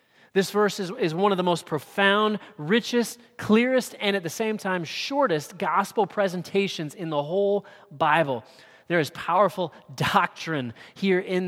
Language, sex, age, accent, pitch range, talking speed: English, male, 30-49, American, 145-195 Hz, 150 wpm